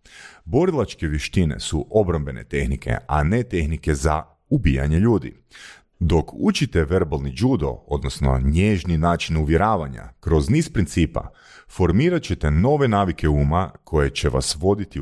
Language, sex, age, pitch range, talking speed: Croatian, male, 40-59, 75-100 Hz, 125 wpm